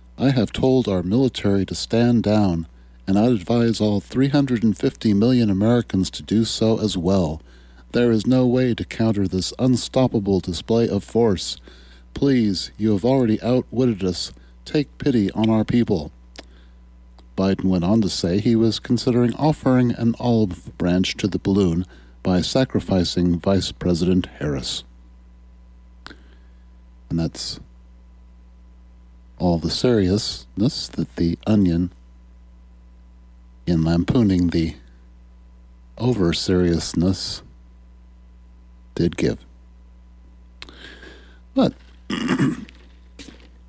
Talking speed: 105 wpm